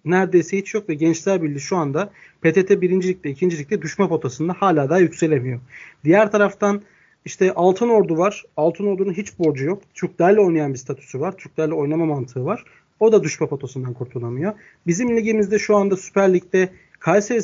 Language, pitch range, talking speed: Turkish, 155-200 Hz, 160 wpm